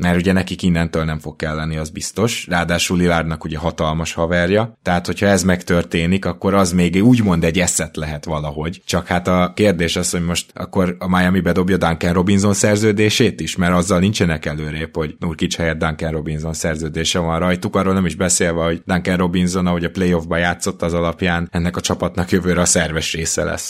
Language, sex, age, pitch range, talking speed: Hungarian, male, 20-39, 80-95 Hz, 185 wpm